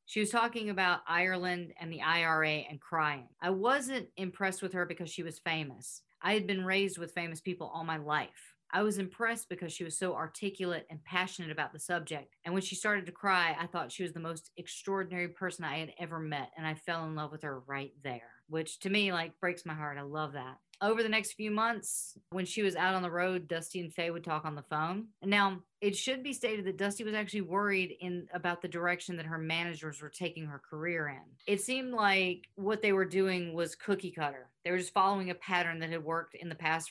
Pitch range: 160-190 Hz